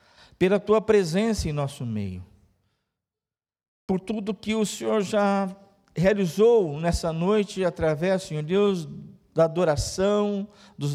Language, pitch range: Portuguese, 145-195 Hz